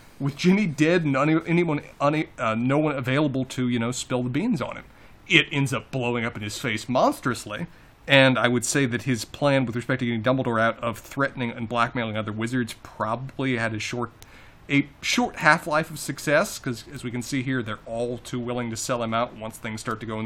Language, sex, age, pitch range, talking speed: English, male, 30-49, 120-155 Hz, 225 wpm